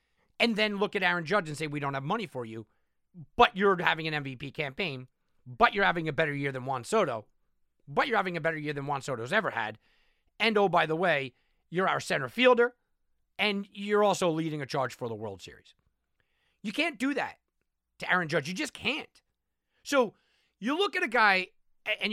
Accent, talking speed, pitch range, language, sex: American, 205 wpm, 145-240 Hz, English, male